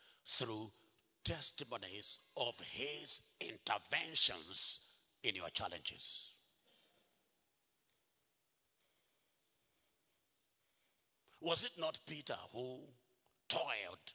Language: English